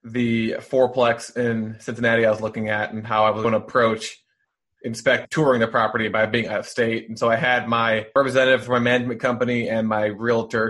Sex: male